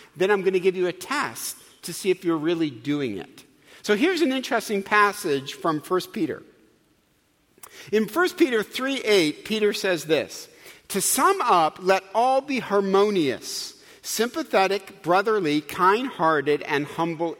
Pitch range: 165-235 Hz